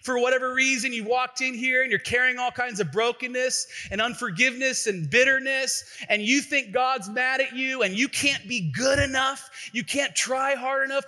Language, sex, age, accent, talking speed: English, male, 30-49, American, 195 wpm